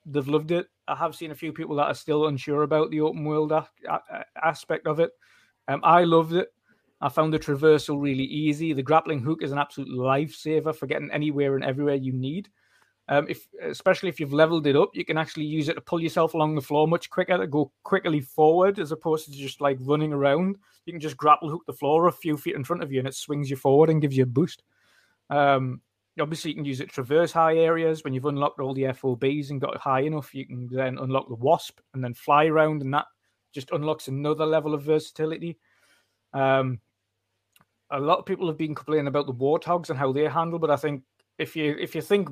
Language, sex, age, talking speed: English, male, 20-39, 230 wpm